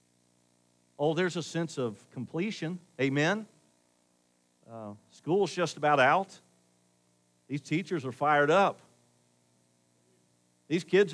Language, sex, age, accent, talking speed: English, male, 50-69, American, 100 wpm